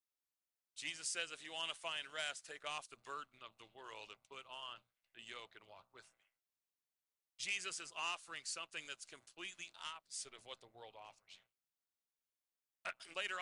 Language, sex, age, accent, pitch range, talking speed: English, male, 40-59, American, 145-190 Hz, 170 wpm